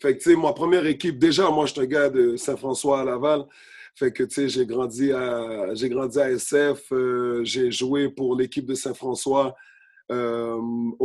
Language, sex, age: English, male, 30-49